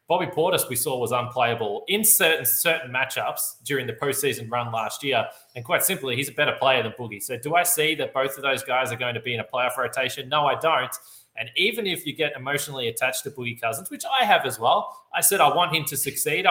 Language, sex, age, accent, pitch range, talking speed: English, male, 20-39, Australian, 120-160 Hz, 245 wpm